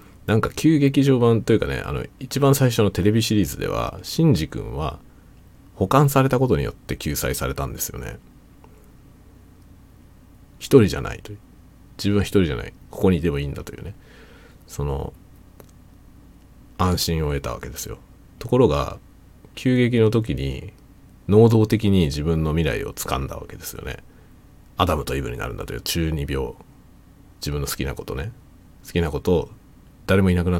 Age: 40-59